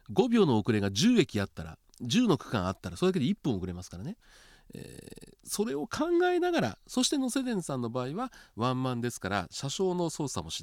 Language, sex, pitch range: Japanese, male, 100-165 Hz